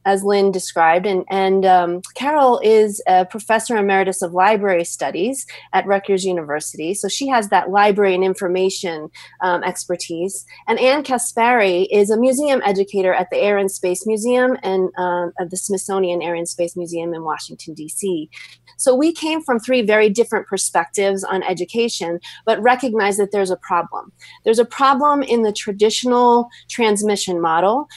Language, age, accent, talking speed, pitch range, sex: English, 30-49, American, 160 wpm, 185-245 Hz, female